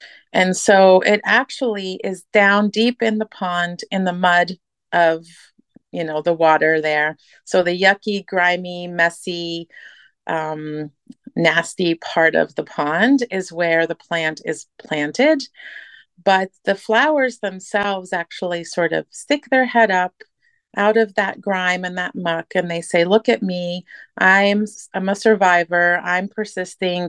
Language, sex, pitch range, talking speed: English, female, 170-210 Hz, 145 wpm